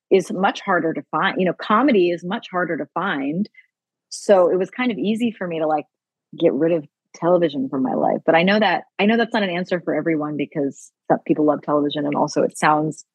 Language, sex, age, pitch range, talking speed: English, female, 30-49, 155-200 Hz, 235 wpm